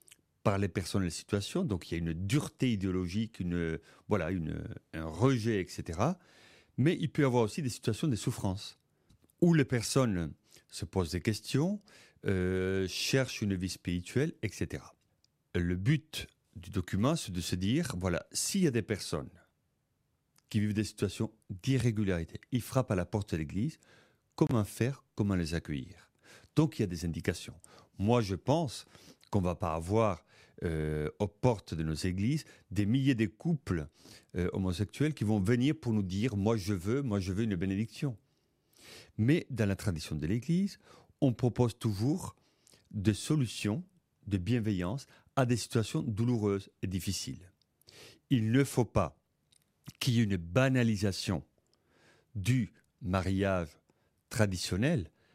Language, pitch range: French, 95-125 Hz